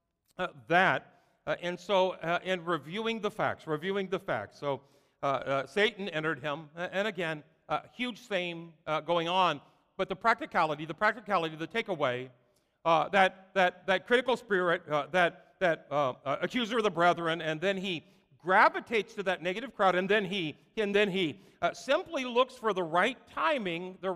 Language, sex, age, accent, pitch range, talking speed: English, male, 50-69, American, 155-215 Hz, 180 wpm